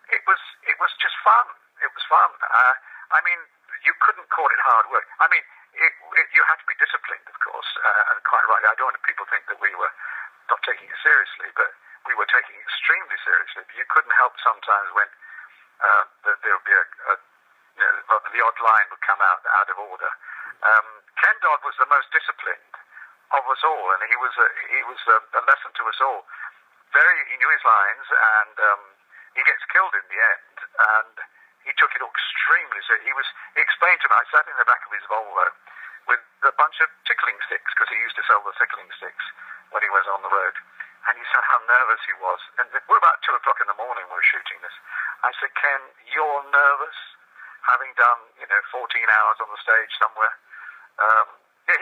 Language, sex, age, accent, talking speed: English, male, 50-69, British, 215 wpm